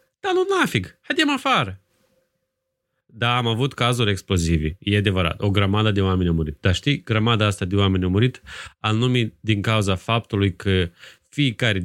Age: 30-49